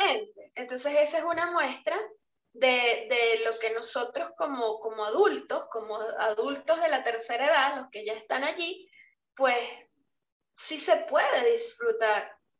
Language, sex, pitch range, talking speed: Spanish, female, 250-325 Hz, 140 wpm